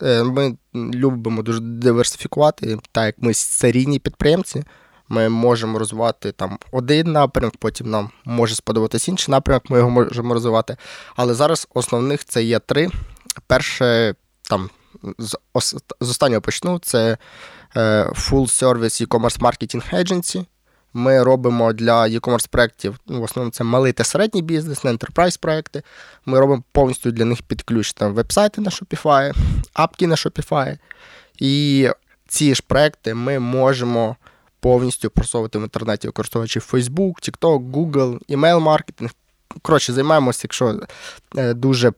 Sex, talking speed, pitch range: male, 125 wpm, 115-145 Hz